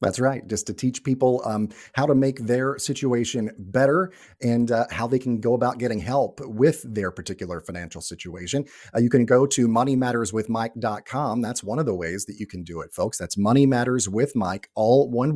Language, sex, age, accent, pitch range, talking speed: English, male, 40-59, American, 105-135 Hz, 190 wpm